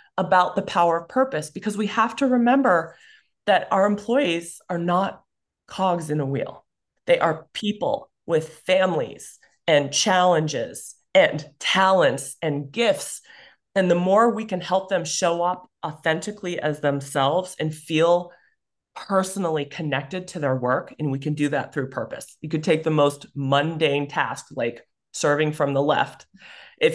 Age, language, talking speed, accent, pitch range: 30-49, English, 155 wpm, American, 150-195 Hz